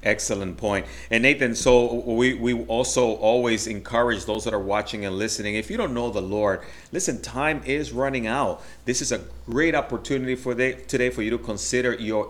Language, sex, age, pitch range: English, male, 30-49, 110-135 Hz